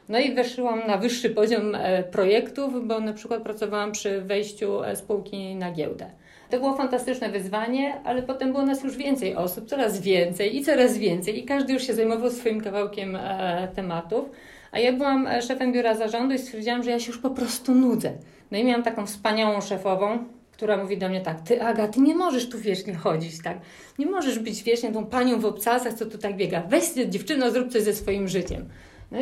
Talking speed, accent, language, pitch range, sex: 195 wpm, native, Polish, 190-240 Hz, female